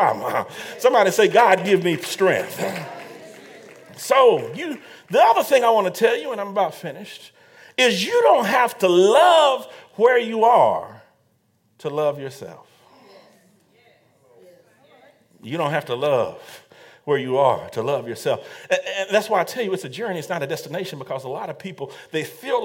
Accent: American